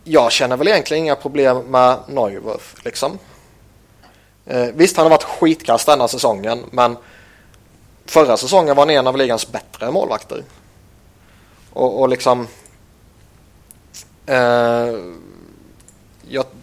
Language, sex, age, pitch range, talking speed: Swedish, male, 20-39, 110-135 Hz, 110 wpm